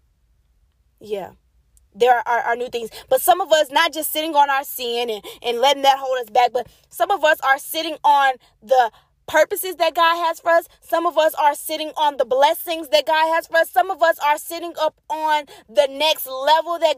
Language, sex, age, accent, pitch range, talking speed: English, female, 20-39, American, 275-340 Hz, 210 wpm